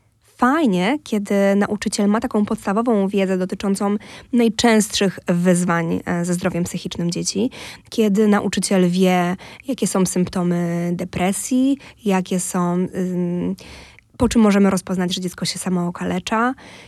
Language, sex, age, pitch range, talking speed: Polish, female, 20-39, 185-250 Hz, 110 wpm